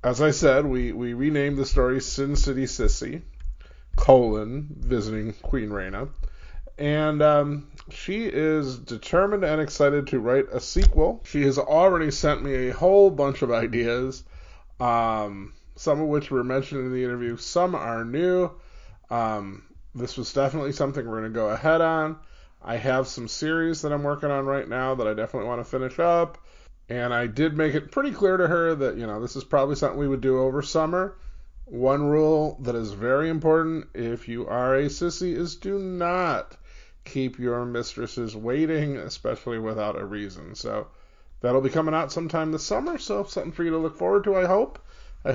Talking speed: 185 wpm